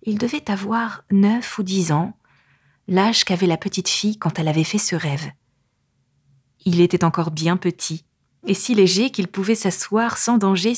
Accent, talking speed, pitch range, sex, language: French, 175 wpm, 155-205 Hz, female, French